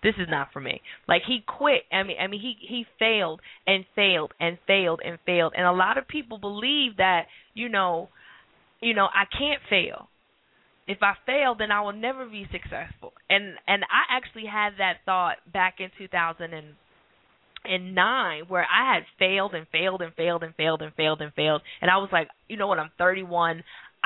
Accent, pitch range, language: American, 180-230 Hz, English